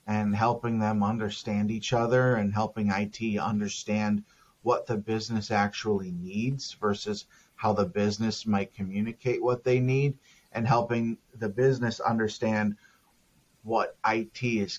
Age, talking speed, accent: 30-49, 130 wpm, American